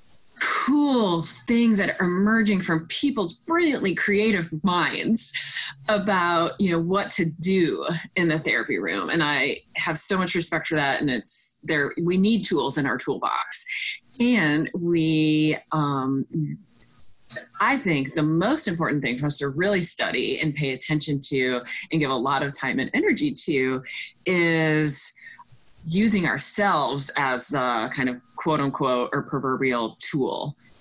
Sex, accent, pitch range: female, American, 140-195 Hz